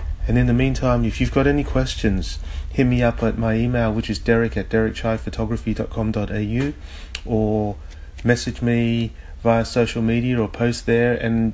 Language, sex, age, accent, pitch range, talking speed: English, male, 30-49, Australian, 90-115 Hz, 170 wpm